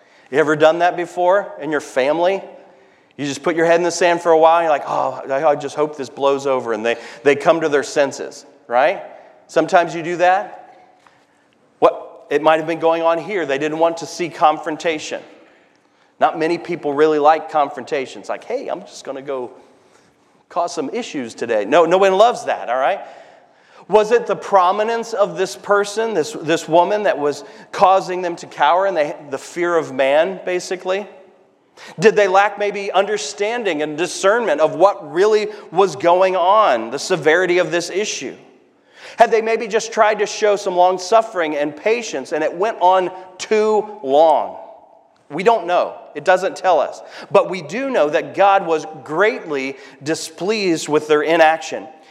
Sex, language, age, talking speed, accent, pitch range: male, English, 40-59, 180 wpm, American, 155-205 Hz